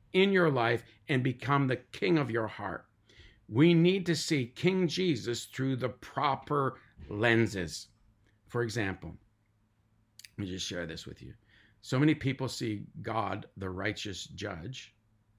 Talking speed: 145 wpm